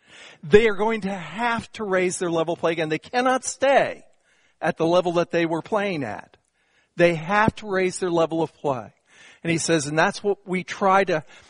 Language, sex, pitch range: English, male, 175-225 Hz